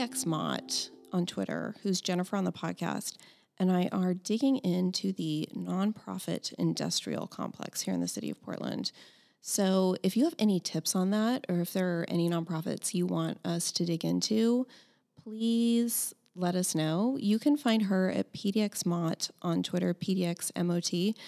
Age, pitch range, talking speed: 30-49, 170-210 Hz, 160 wpm